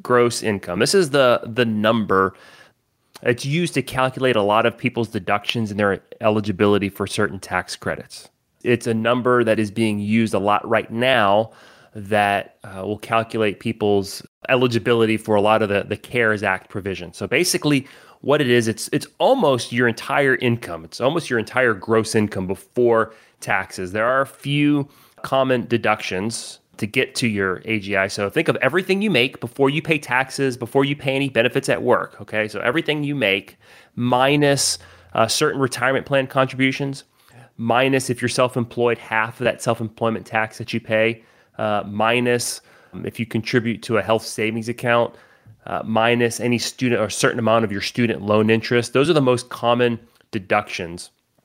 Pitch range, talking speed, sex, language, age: 105-125 Hz, 170 wpm, male, English, 30-49